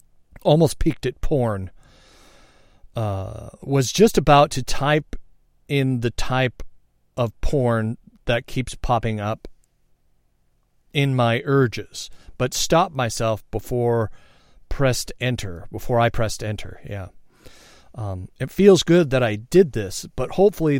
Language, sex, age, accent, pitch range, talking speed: English, male, 40-59, American, 105-135 Hz, 125 wpm